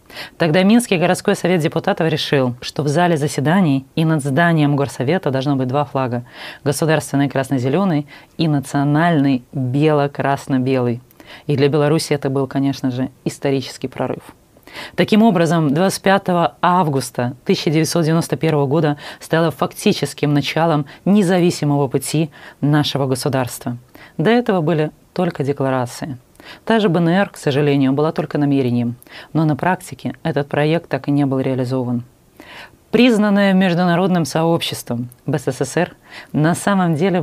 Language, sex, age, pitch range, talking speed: Russian, female, 20-39, 135-165 Hz, 120 wpm